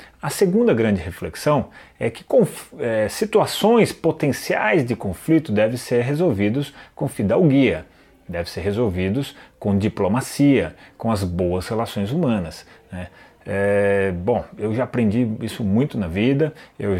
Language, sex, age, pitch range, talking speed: Portuguese, male, 30-49, 100-150 Hz, 125 wpm